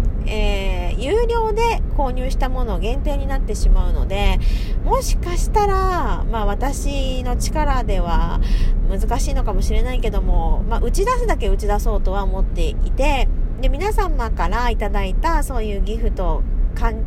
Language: Japanese